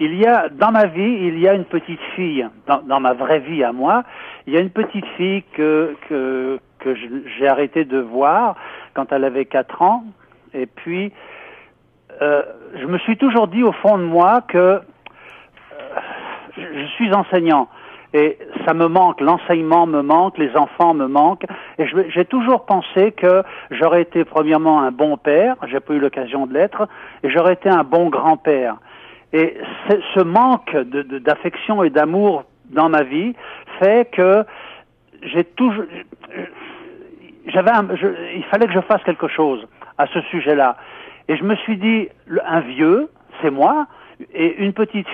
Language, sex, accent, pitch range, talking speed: French, male, French, 145-210 Hz, 170 wpm